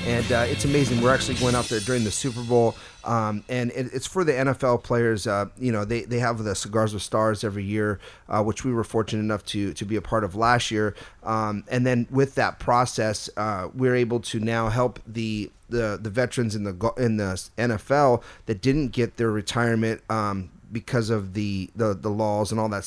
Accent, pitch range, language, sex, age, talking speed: American, 105-120 Hz, English, male, 30-49, 220 wpm